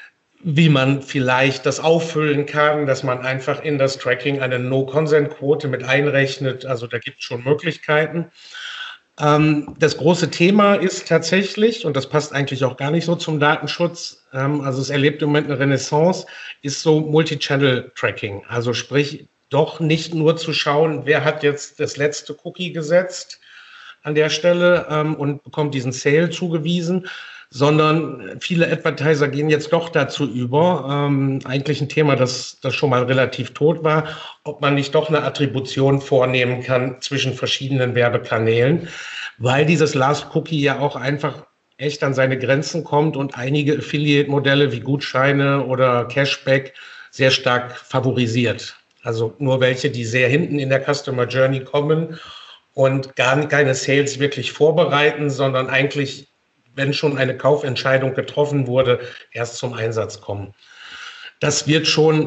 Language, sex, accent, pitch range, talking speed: German, male, German, 130-155 Hz, 150 wpm